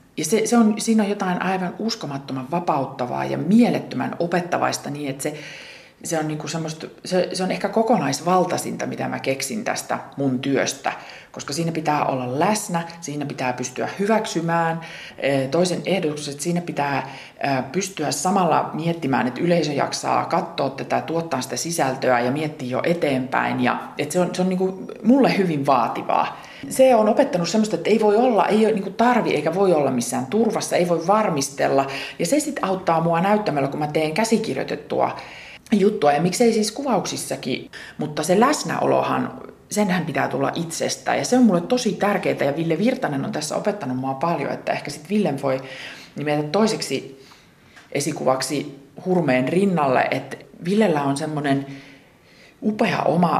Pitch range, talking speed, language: 140-200 Hz, 160 wpm, Finnish